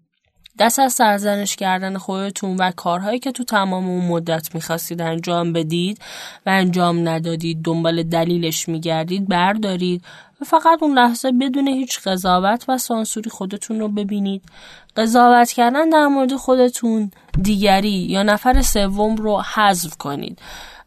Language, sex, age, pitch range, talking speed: Persian, female, 10-29, 175-245 Hz, 130 wpm